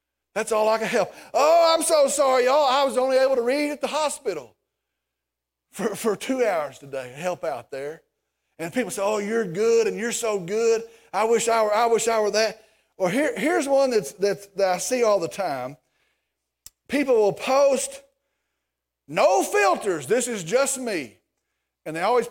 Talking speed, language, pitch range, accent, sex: 190 wpm, English, 185-275 Hz, American, male